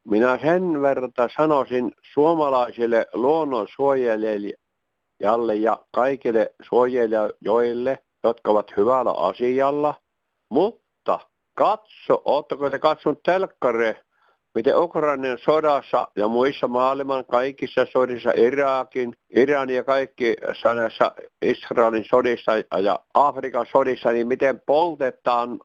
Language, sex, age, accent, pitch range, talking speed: Finnish, male, 60-79, native, 120-145 Hz, 95 wpm